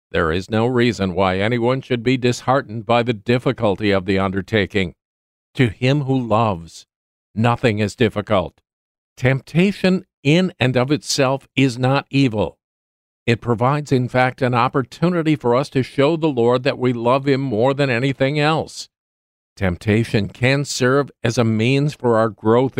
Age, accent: 50-69, American